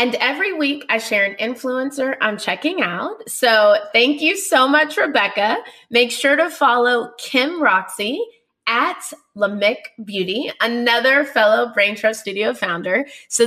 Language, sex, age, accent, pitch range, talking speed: English, female, 20-39, American, 200-285 Hz, 145 wpm